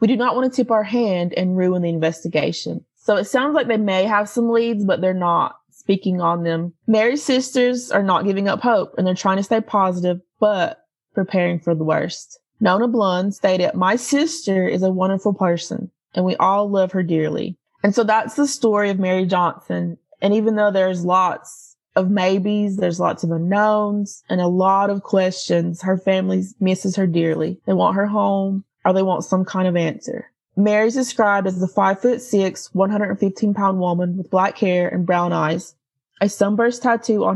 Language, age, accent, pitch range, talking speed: English, 20-39, American, 180-215 Hz, 200 wpm